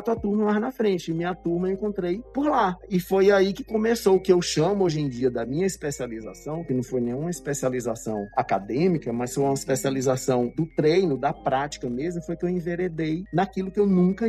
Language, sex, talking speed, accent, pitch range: Portuguese, male, 210 wpm, Brazilian, 130-185 Hz